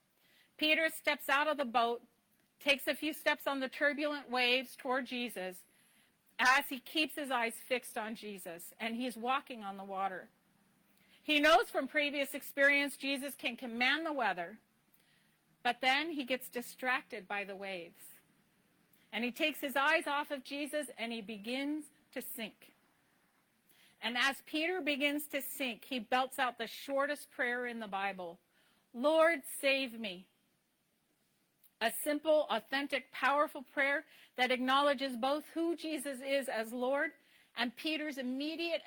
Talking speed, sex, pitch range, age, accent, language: 145 wpm, female, 230-295 Hz, 40-59, American, English